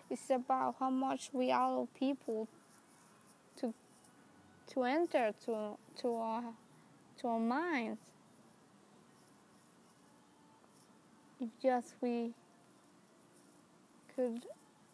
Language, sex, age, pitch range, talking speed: English, female, 10-29, 210-235 Hz, 80 wpm